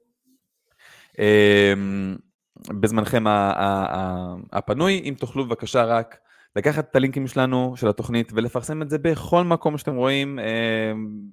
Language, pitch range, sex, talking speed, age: Hebrew, 100-140 Hz, male, 130 wpm, 20-39